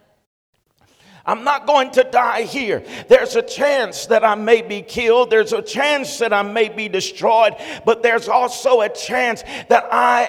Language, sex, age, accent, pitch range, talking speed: English, male, 50-69, American, 230-275 Hz, 170 wpm